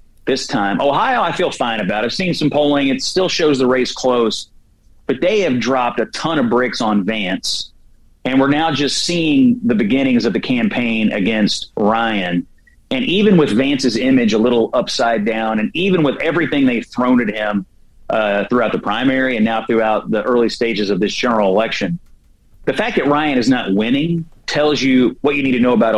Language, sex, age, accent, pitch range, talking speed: English, male, 30-49, American, 110-185 Hz, 200 wpm